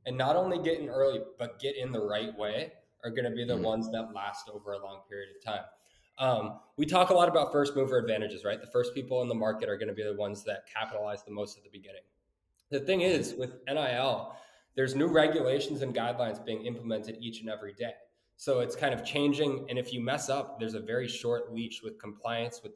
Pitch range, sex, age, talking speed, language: 115-145 Hz, male, 20-39, 235 wpm, English